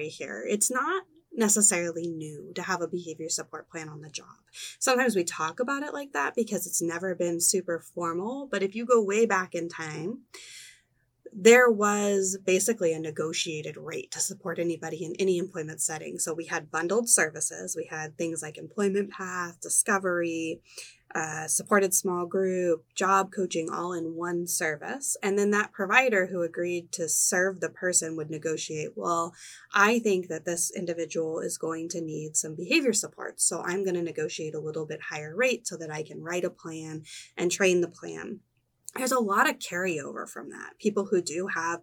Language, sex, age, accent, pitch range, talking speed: English, female, 20-39, American, 165-200 Hz, 180 wpm